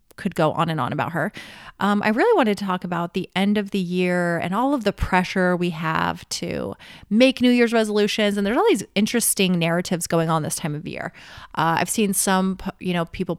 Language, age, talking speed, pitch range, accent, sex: English, 30-49, 225 wpm, 175-235 Hz, American, female